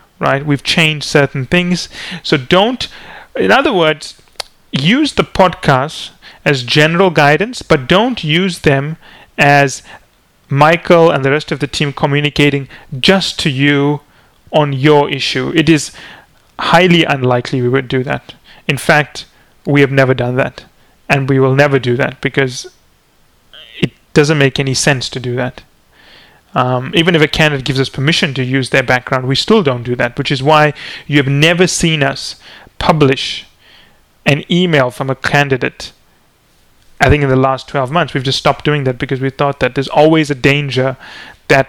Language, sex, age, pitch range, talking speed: English, male, 30-49, 135-155 Hz, 170 wpm